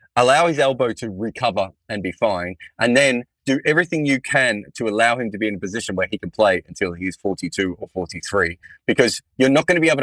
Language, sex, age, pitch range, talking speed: English, male, 20-39, 100-140 Hz, 225 wpm